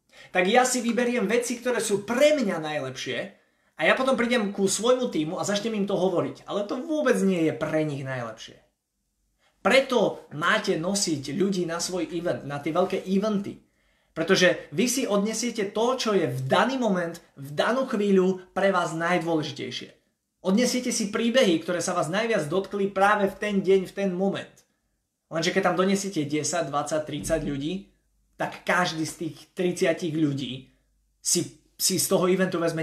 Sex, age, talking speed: male, 20-39, 170 wpm